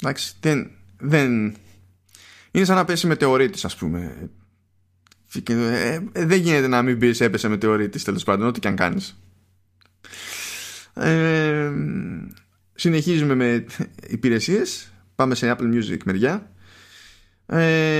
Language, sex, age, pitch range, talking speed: Greek, male, 20-39, 95-120 Hz, 105 wpm